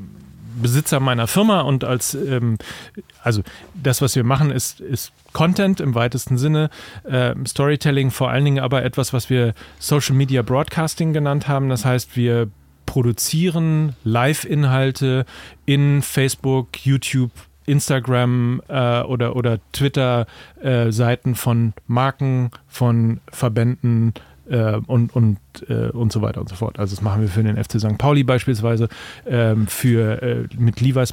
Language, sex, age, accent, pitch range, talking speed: German, male, 40-59, German, 115-135 Hz, 130 wpm